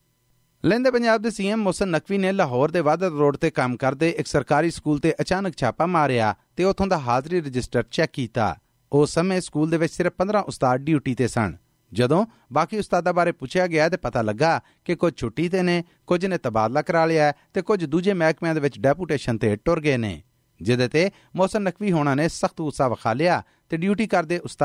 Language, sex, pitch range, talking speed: Punjabi, male, 135-180 Hz, 155 wpm